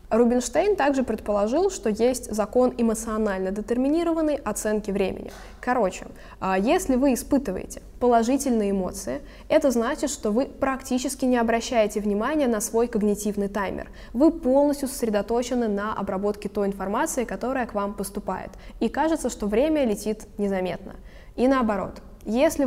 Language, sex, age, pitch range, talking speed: Russian, female, 20-39, 200-255 Hz, 125 wpm